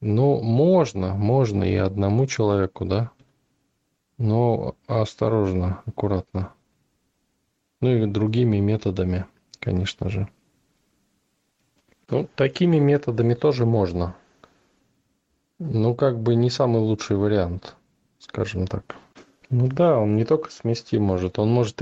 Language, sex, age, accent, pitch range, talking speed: Russian, male, 20-39, native, 100-120 Hz, 105 wpm